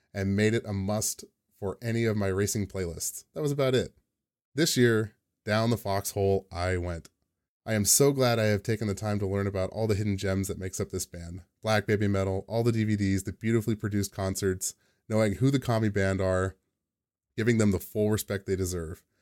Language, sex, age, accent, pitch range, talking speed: English, male, 30-49, American, 95-110 Hz, 205 wpm